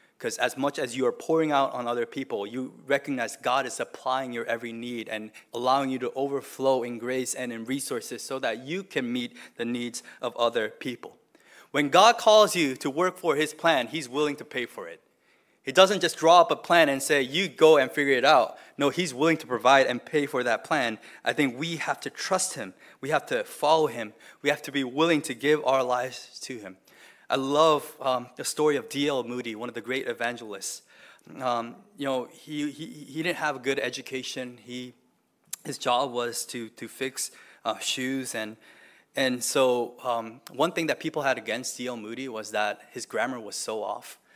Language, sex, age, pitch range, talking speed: English, male, 20-39, 120-150 Hz, 210 wpm